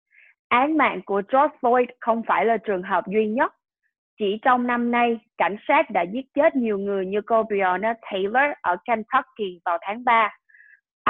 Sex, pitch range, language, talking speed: female, 200-255 Hz, English, 170 wpm